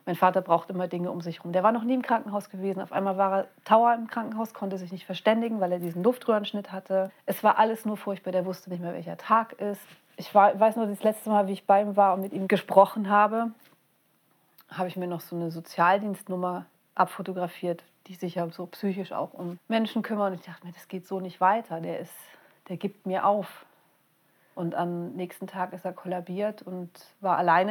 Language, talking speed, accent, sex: German, 220 wpm, German, female